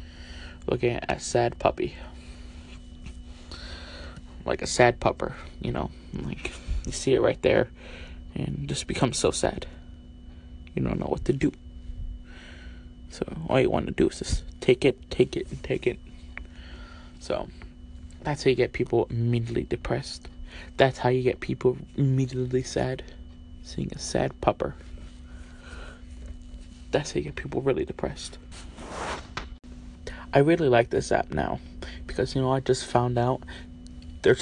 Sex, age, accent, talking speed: male, 20-39, American, 145 wpm